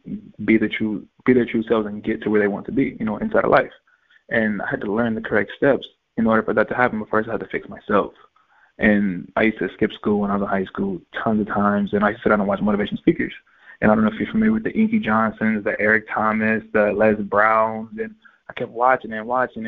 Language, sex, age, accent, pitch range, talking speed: English, male, 20-39, American, 110-125 Hz, 265 wpm